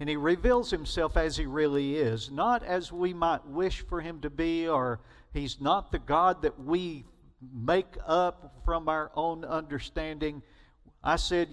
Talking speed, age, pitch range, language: 165 wpm, 50-69, 145-185 Hz, English